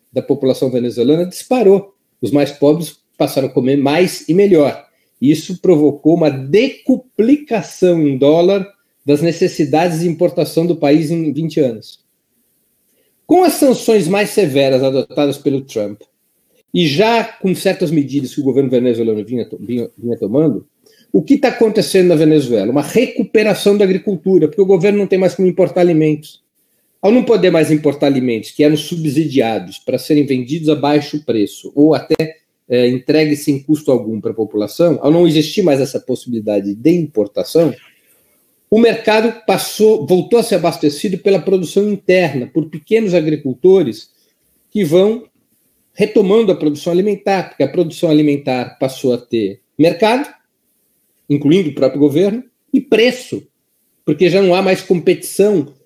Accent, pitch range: Brazilian, 145-195 Hz